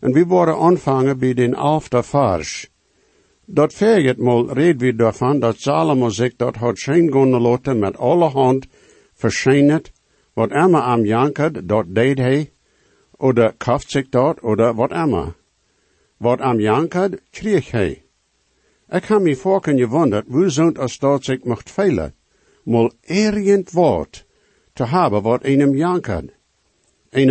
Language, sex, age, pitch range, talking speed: English, male, 60-79, 120-155 Hz, 145 wpm